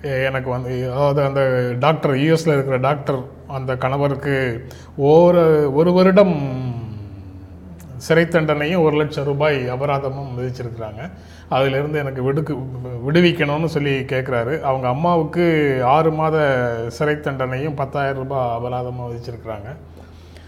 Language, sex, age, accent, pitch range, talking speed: Tamil, male, 30-49, native, 115-150 Hz, 100 wpm